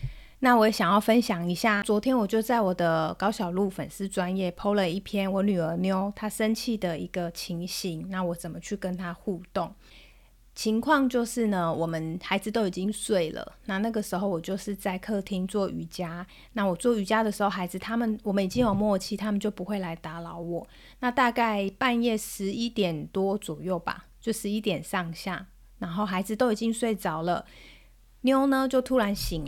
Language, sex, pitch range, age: Chinese, female, 185-230 Hz, 30-49